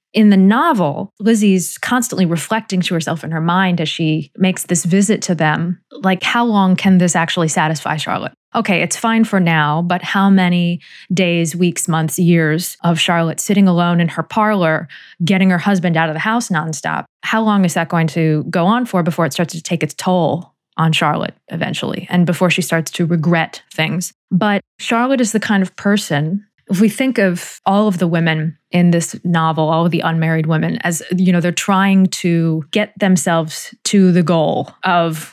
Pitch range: 165-195 Hz